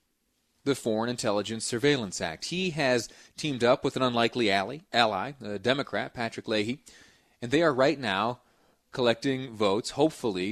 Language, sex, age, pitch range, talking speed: English, male, 30-49, 105-125 Hz, 150 wpm